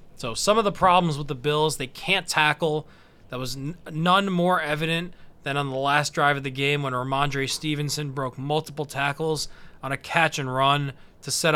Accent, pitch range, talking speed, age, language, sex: American, 140-160 Hz, 180 wpm, 20-39, English, male